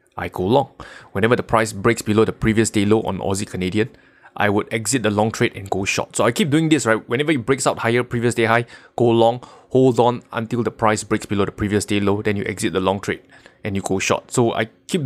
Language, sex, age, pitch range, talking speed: English, male, 20-39, 105-130 Hz, 255 wpm